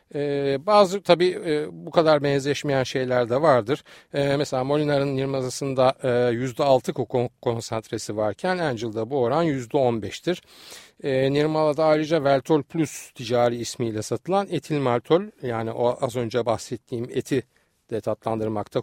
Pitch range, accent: 120-155 Hz, native